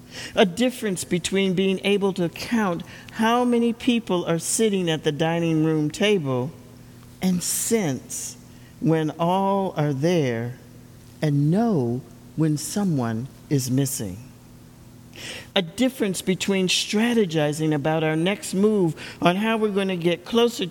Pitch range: 125-195 Hz